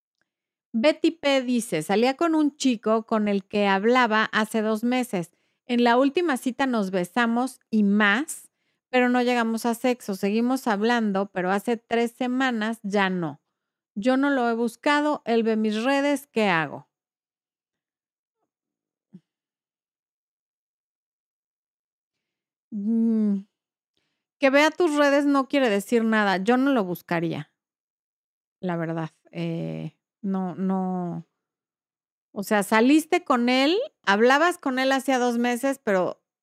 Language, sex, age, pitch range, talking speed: Spanish, female, 40-59, 195-265 Hz, 120 wpm